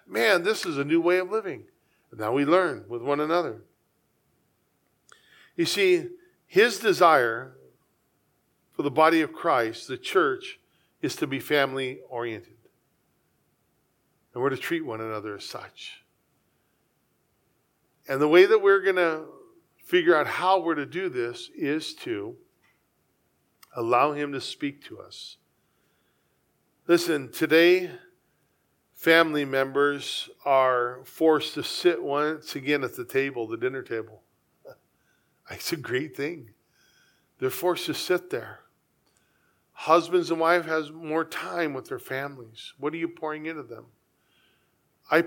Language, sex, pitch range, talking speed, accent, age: English, male, 145-180 Hz, 135 wpm, American, 40-59